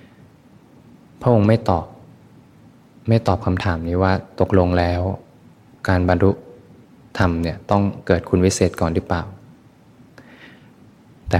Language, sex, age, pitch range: Thai, male, 20-39, 85-100 Hz